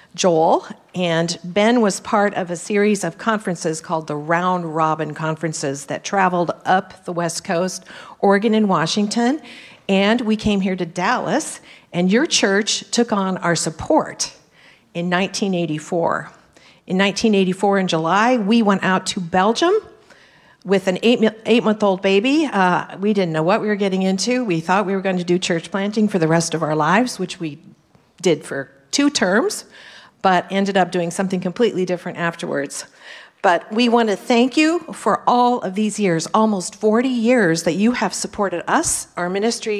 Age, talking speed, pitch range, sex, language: 50-69, 165 wpm, 170-215 Hz, female, English